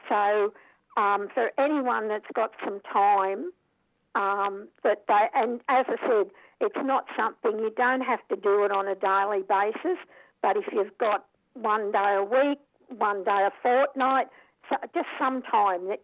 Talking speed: 165 wpm